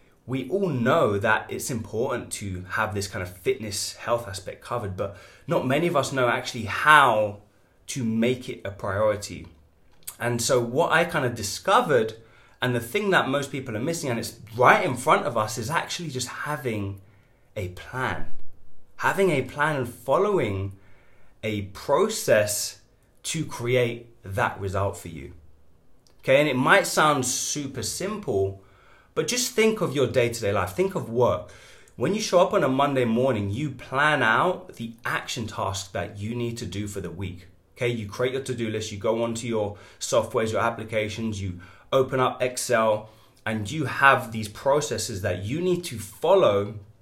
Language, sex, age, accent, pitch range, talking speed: English, male, 20-39, British, 100-130 Hz, 170 wpm